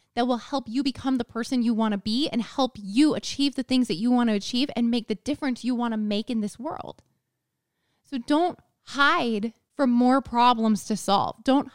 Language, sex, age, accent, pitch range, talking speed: English, female, 20-39, American, 215-270 Hz, 215 wpm